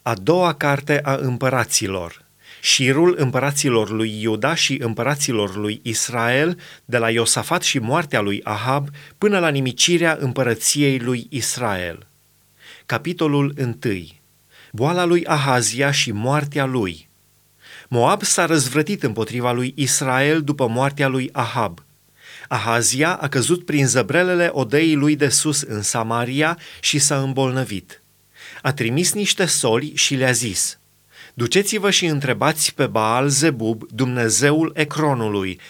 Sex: male